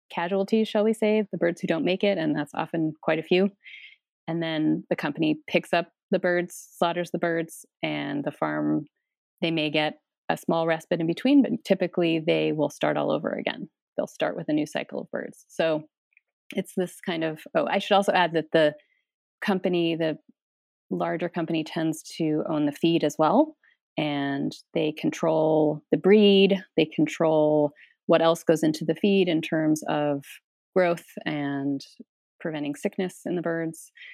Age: 30-49